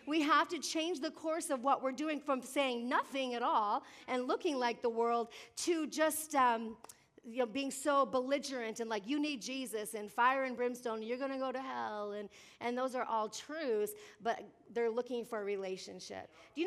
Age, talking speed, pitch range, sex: 40-59, 205 wpm, 245-320 Hz, female